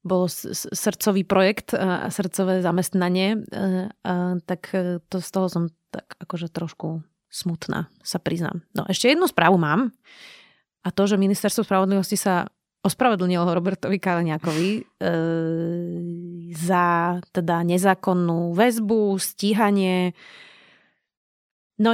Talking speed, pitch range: 110 wpm, 175-195 Hz